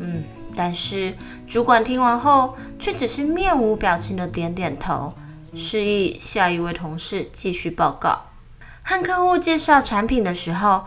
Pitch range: 180-260 Hz